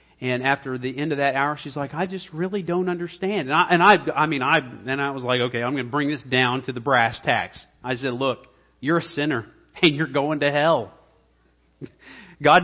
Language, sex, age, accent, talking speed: English, male, 40-59, American, 230 wpm